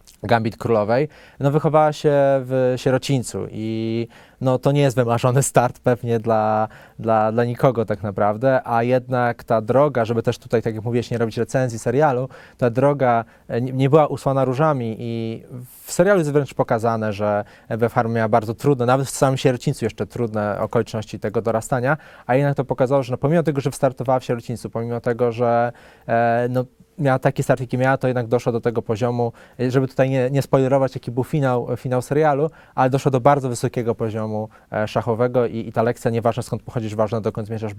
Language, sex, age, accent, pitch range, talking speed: Polish, male, 20-39, native, 115-140 Hz, 185 wpm